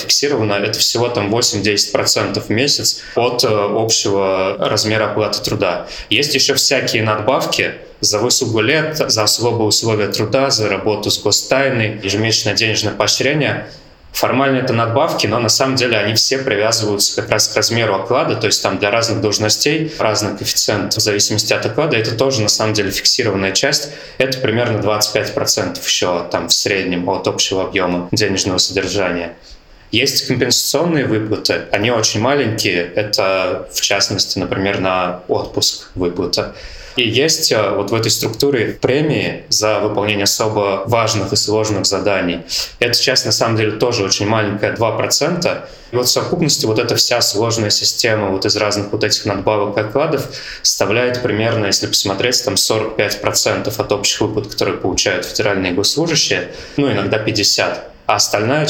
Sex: male